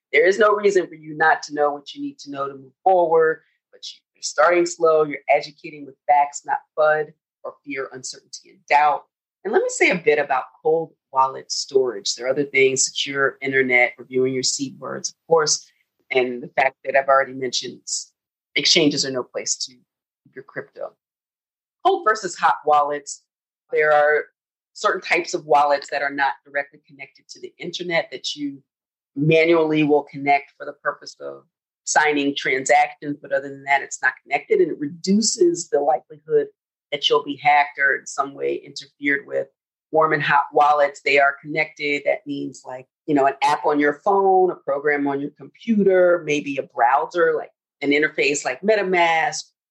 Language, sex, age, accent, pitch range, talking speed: English, female, 40-59, American, 140-180 Hz, 180 wpm